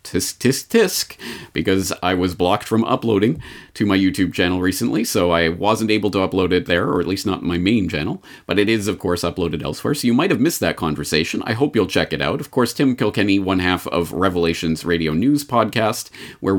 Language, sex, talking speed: English, male, 220 wpm